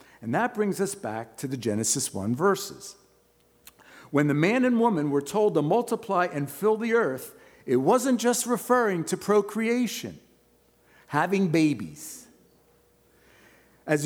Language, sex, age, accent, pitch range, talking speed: English, male, 50-69, American, 155-235 Hz, 135 wpm